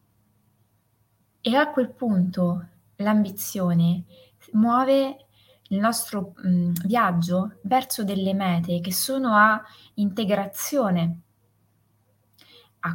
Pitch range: 165-215 Hz